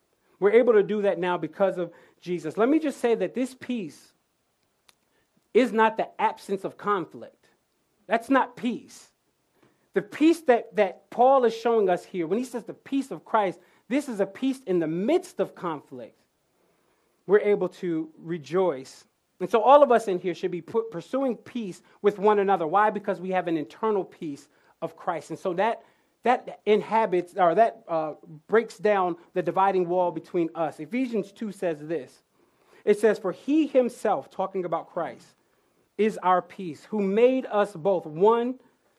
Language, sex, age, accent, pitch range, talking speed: English, male, 30-49, American, 175-230 Hz, 170 wpm